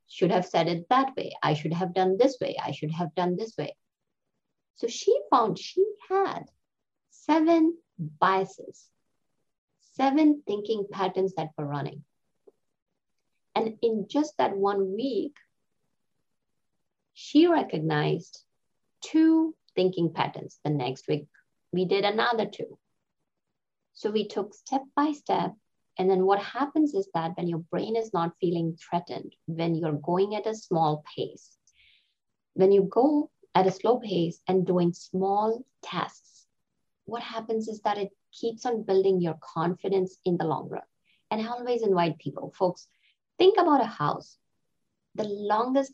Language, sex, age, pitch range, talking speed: English, female, 50-69, 175-230 Hz, 145 wpm